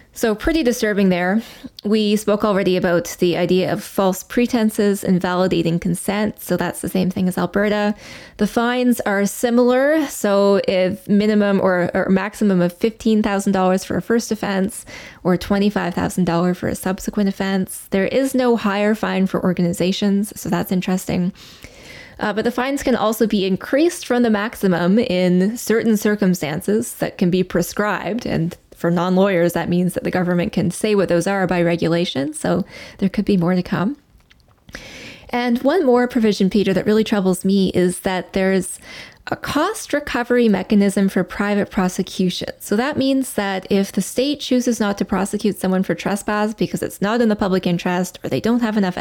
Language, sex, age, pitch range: English, female, 10-29, 185-220 Hz